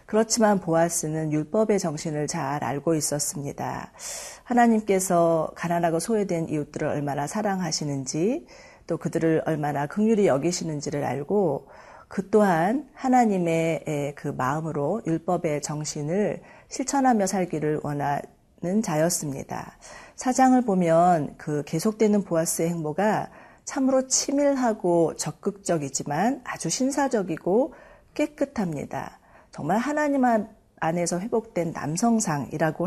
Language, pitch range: Korean, 155-220 Hz